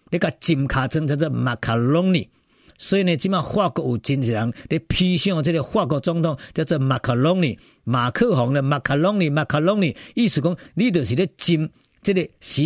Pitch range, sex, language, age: 120-170 Hz, male, Chinese, 50-69